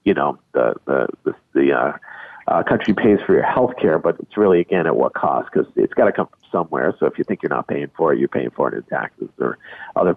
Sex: male